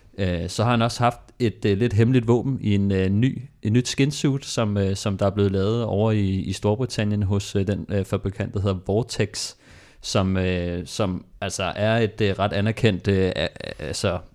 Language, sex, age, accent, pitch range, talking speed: Danish, male, 30-49, native, 95-110 Hz, 190 wpm